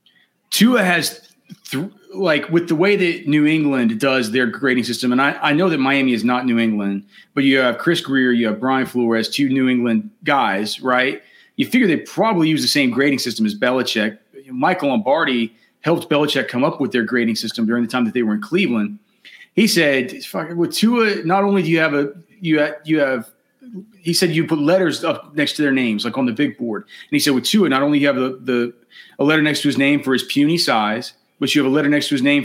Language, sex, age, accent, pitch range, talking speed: English, male, 30-49, American, 125-175 Hz, 240 wpm